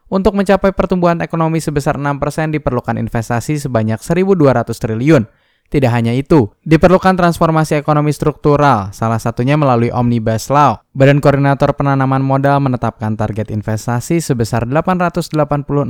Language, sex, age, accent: Indonesian, male, 10-29, native